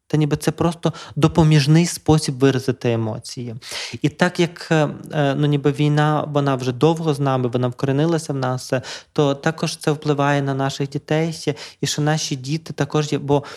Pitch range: 130-155 Hz